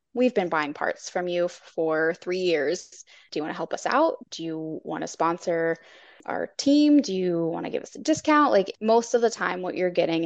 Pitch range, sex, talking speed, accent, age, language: 175-225 Hz, female, 230 wpm, American, 20-39, English